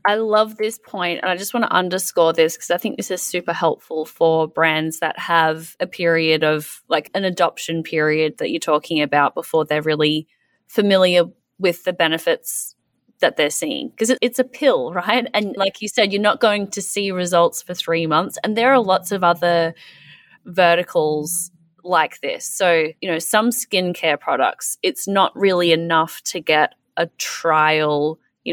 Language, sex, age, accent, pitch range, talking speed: English, female, 20-39, Australian, 155-195 Hz, 185 wpm